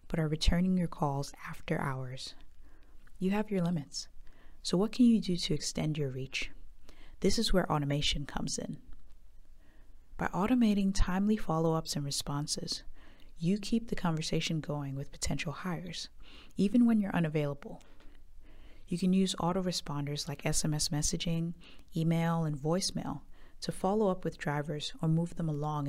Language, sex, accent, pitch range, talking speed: English, female, American, 150-190 Hz, 145 wpm